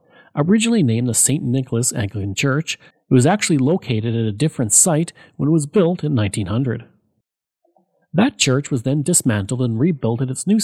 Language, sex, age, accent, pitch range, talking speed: English, male, 40-59, Canadian, 115-160 Hz, 175 wpm